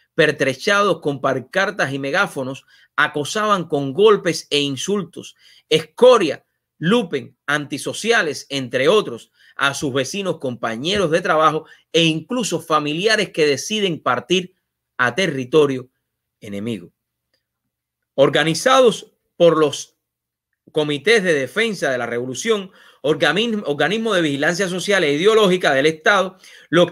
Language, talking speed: English, 105 wpm